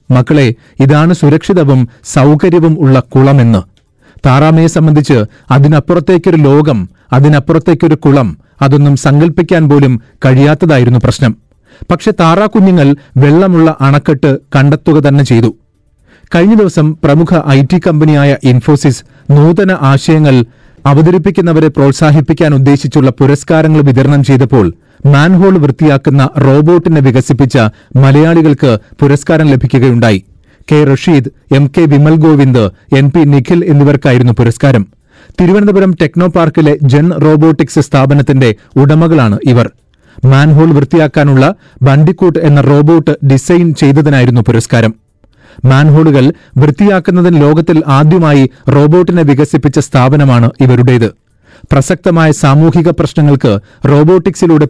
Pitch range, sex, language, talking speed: 135-160 Hz, male, Malayalam, 90 wpm